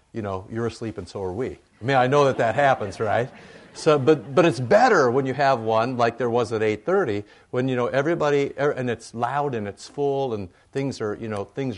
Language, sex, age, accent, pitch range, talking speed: English, male, 50-69, American, 110-150 Hz, 235 wpm